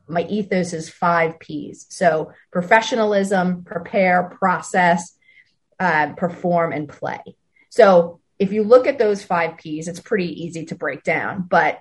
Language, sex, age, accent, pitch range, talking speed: English, female, 30-49, American, 170-215 Hz, 140 wpm